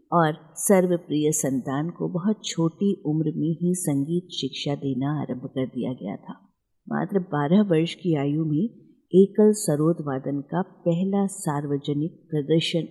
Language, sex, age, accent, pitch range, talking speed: Hindi, female, 50-69, native, 150-190 Hz, 140 wpm